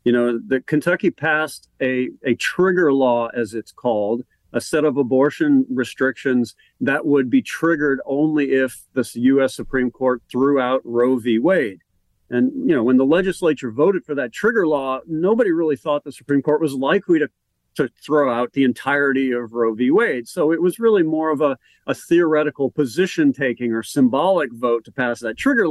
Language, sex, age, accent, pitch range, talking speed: English, male, 50-69, American, 120-155 Hz, 185 wpm